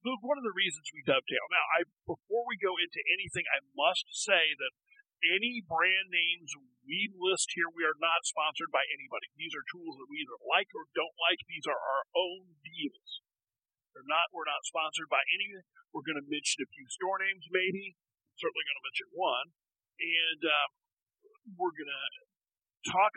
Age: 40-59